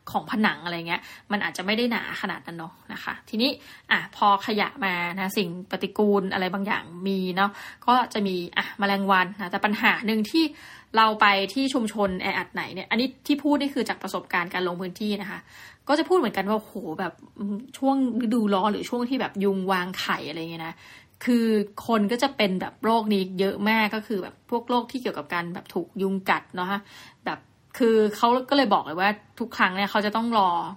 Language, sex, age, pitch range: Thai, female, 20-39, 190-235 Hz